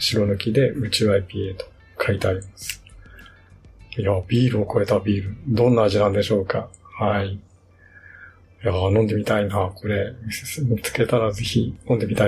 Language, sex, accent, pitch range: Japanese, male, native, 95-120 Hz